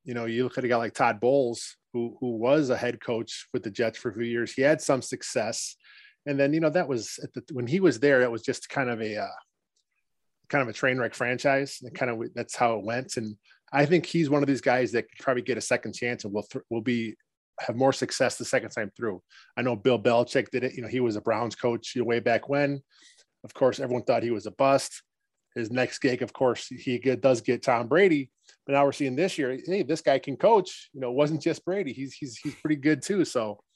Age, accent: 20-39, American